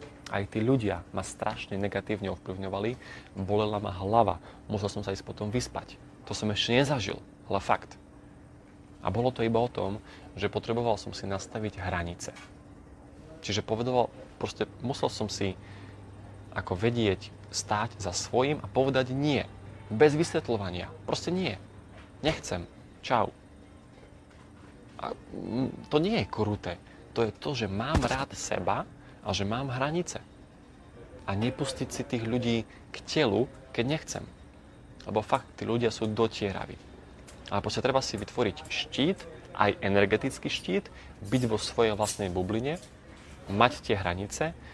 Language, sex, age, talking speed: Slovak, male, 30-49, 135 wpm